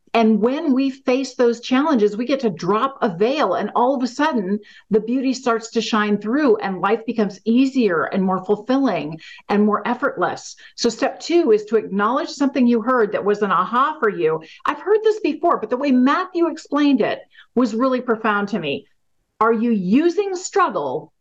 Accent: American